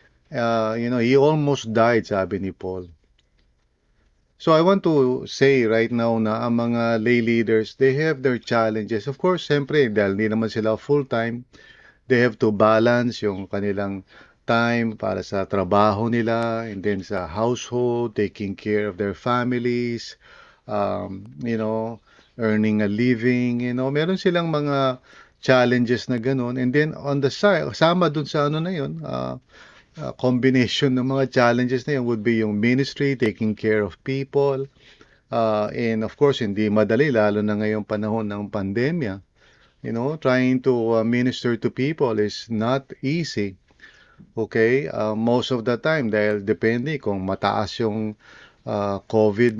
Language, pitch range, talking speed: English, 105-130 Hz, 155 wpm